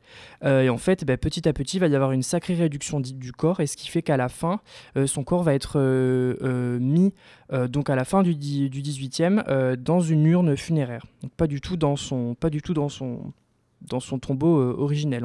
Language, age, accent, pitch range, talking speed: French, 20-39, French, 130-165 Hz, 215 wpm